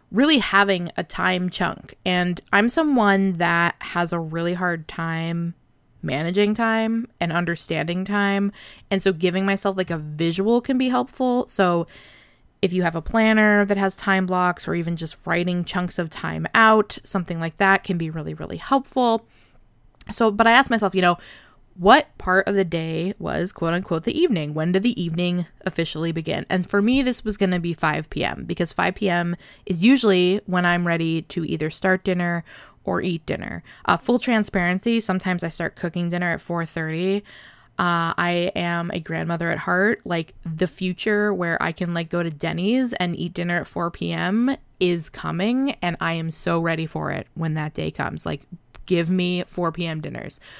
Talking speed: 185 wpm